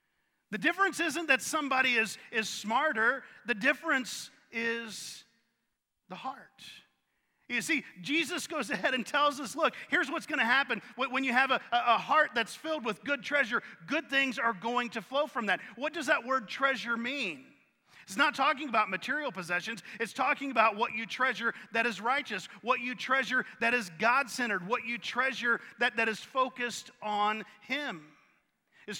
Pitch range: 225-270 Hz